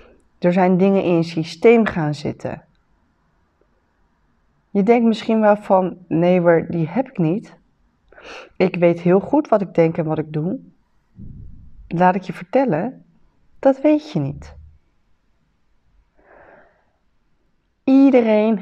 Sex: female